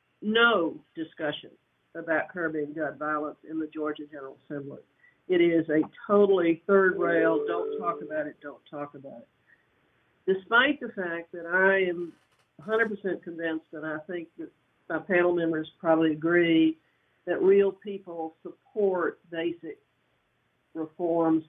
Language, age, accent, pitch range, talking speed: English, 50-69, American, 155-185 Hz, 135 wpm